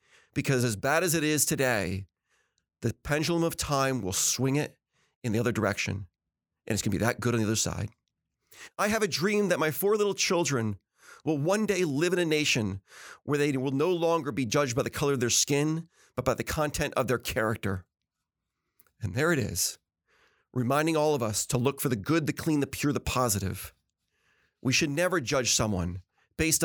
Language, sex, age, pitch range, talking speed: English, male, 30-49, 105-145 Hz, 205 wpm